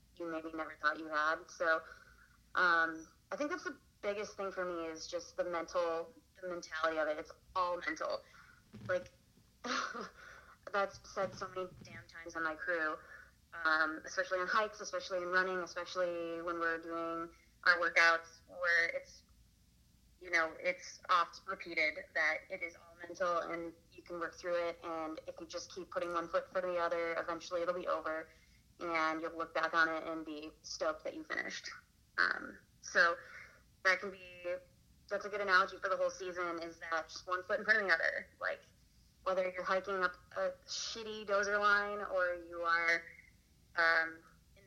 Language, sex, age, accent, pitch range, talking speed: English, female, 30-49, American, 165-185 Hz, 175 wpm